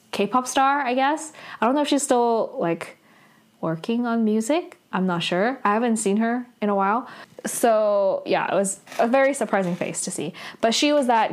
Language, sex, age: English, female, 10-29